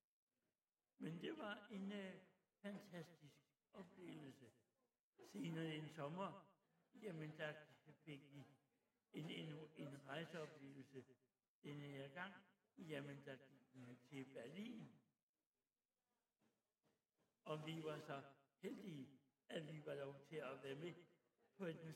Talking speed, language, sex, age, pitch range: 110 wpm, Italian, male, 60-79, 140-170 Hz